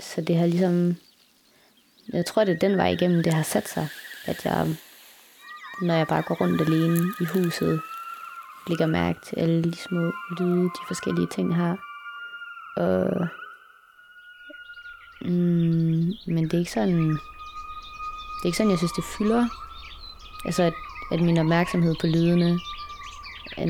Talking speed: 150 wpm